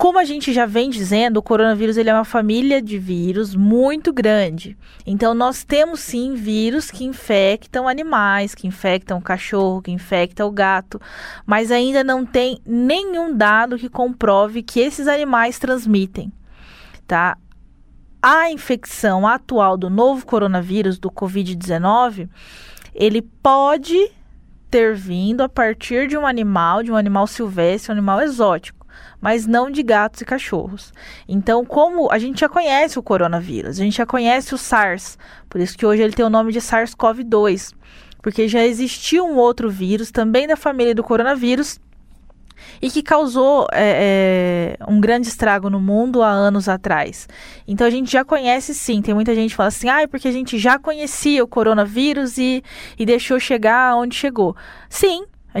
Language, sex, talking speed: Portuguese, female, 160 wpm